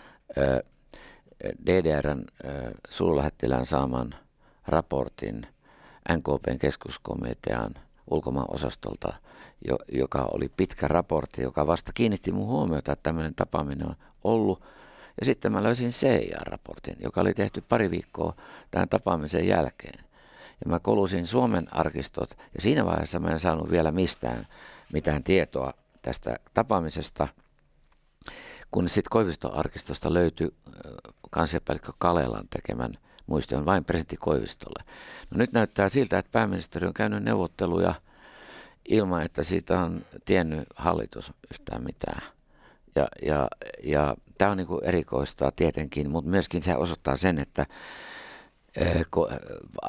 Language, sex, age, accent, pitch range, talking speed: Finnish, male, 60-79, native, 75-95 Hz, 110 wpm